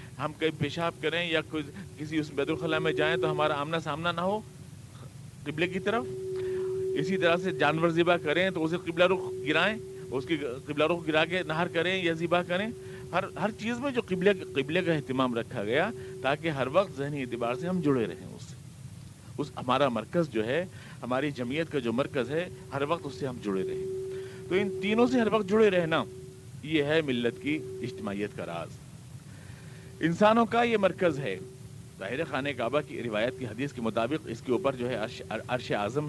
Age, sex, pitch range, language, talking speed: 50-69, male, 125-180 Hz, Urdu, 195 wpm